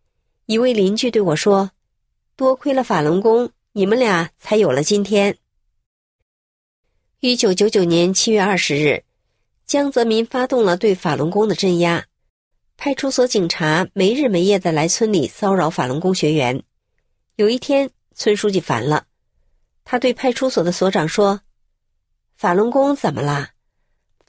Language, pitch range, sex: Chinese, 180-250 Hz, female